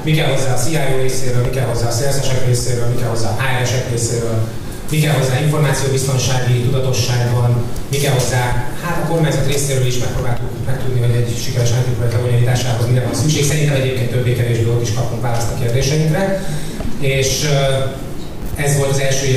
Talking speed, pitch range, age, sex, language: 145 wpm, 120-140 Hz, 30-49, male, Hungarian